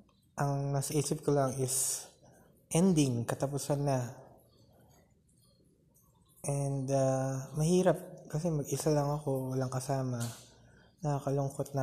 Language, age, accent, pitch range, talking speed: Filipino, 20-39, native, 130-150 Hz, 90 wpm